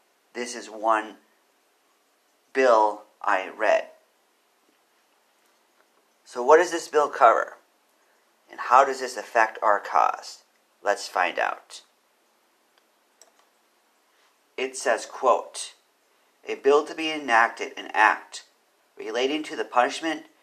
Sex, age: male, 50-69